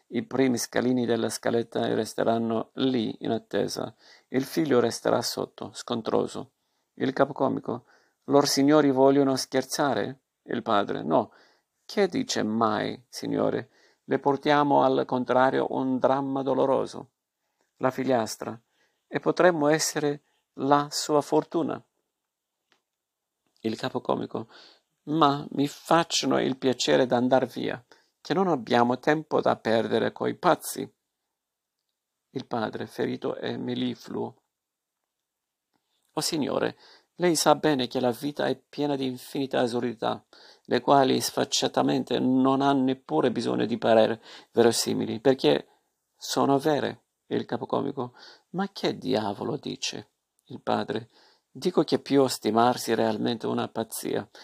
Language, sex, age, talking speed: Italian, male, 50-69, 120 wpm